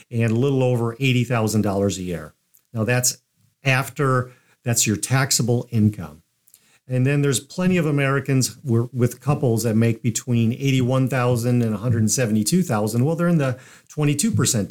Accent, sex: American, male